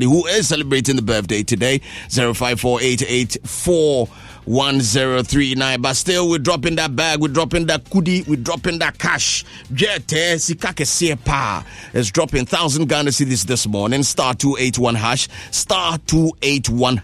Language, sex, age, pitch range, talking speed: English, male, 30-49, 120-150 Hz, 125 wpm